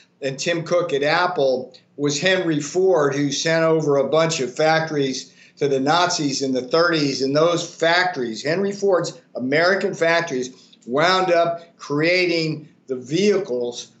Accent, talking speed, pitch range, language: American, 140 wpm, 140-175 Hz, English